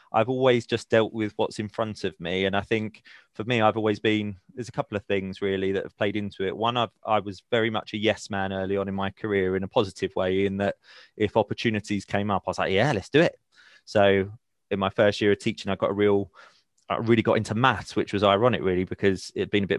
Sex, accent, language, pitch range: male, British, English, 100-115 Hz